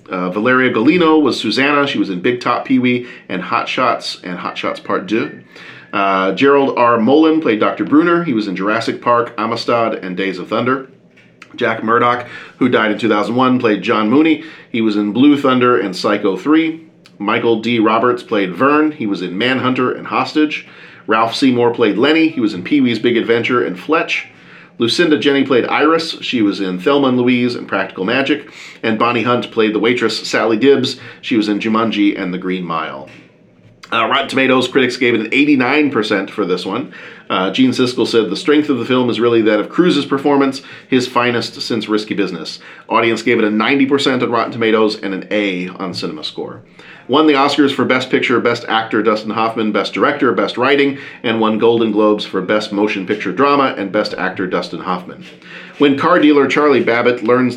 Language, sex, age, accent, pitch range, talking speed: English, male, 40-59, American, 110-140 Hz, 190 wpm